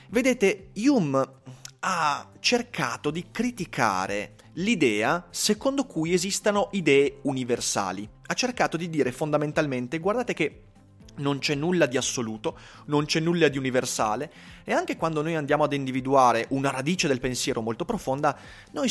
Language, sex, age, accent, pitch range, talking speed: Italian, male, 30-49, native, 120-180 Hz, 135 wpm